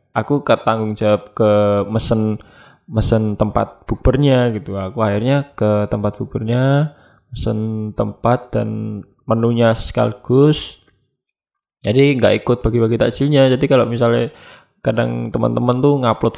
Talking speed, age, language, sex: 115 wpm, 20-39, Indonesian, male